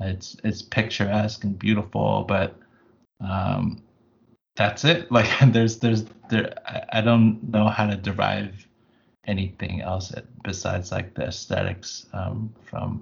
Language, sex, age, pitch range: English, male, 20-39, 95-115 Hz